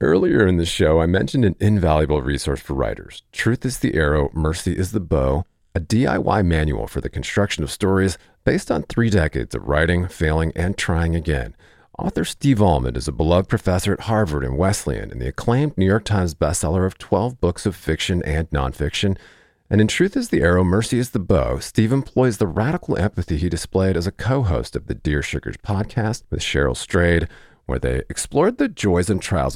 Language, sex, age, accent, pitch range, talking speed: English, male, 40-59, American, 80-105 Hz, 195 wpm